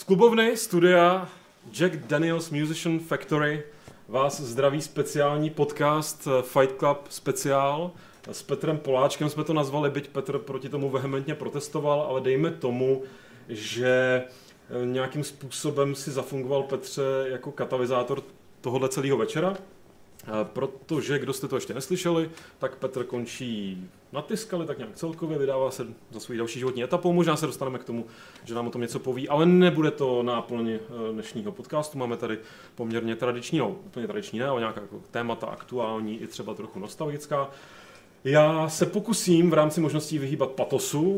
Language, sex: Czech, male